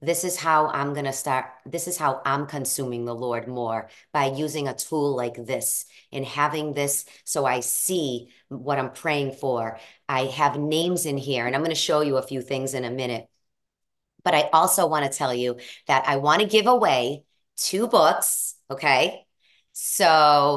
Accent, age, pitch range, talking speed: American, 40-59, 135-170 Hz, 190 wpm